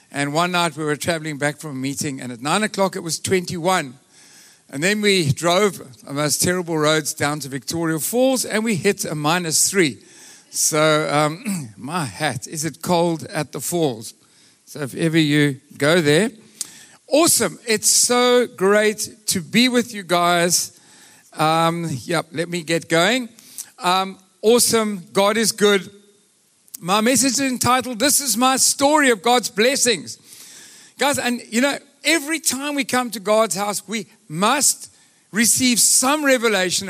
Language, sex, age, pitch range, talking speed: English, male, 50-69, 170-245 Hz, 160 wpm